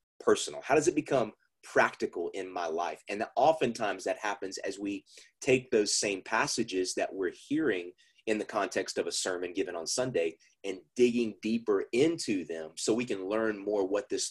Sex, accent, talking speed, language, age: male, American, 180 wpm, English, 30-49